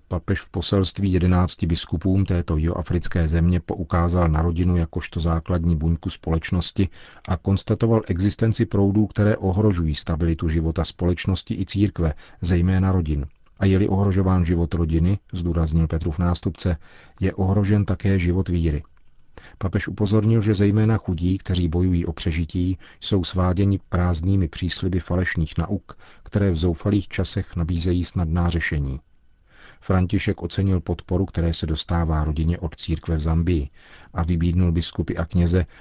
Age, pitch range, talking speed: 40-59, 85-95 Hz, 135 wpm